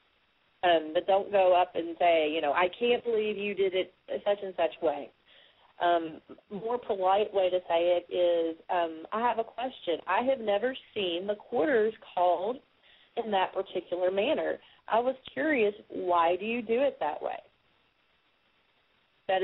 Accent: American